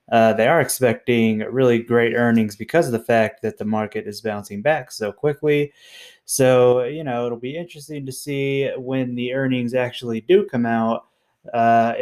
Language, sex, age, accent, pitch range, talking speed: English, male, 20-39, American, 115-140 Hz, 175 wpm